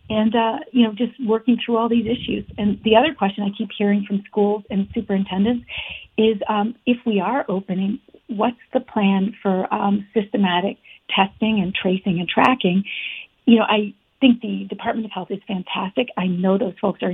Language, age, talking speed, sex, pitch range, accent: English, 50-69, 185 wpm, female, 190-235 Hz, American